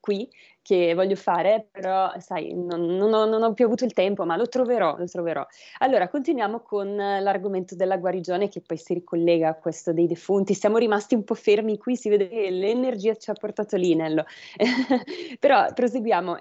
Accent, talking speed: native, 180 wpm